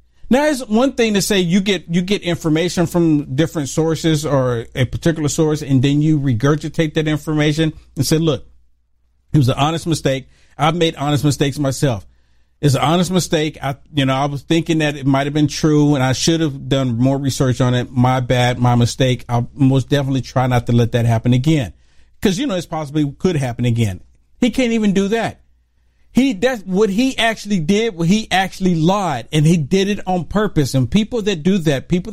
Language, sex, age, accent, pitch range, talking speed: English, male, 50-69, American, 135-185 Hz, 205 wpm